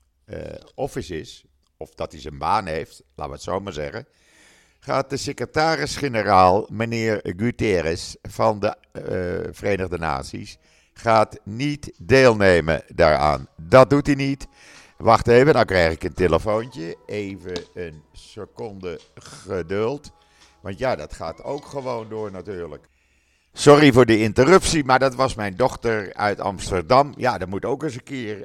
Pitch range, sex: 85-125 Hz, male